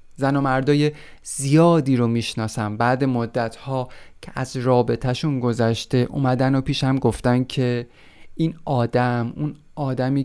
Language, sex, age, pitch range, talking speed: Persian, male, 30-49, 120-145 Hz, 125 wpm